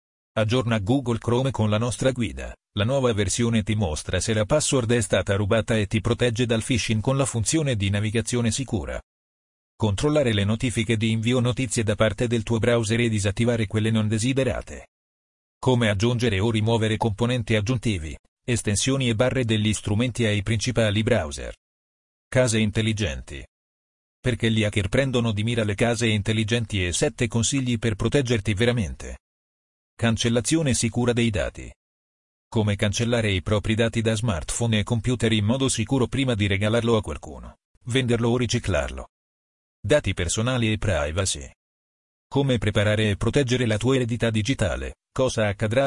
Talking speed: 150 wpm